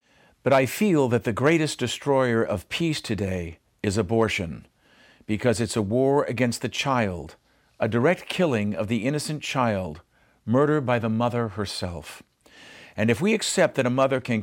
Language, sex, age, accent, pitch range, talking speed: English, male, 50-69, American, 105-140 Hz, 160 wpm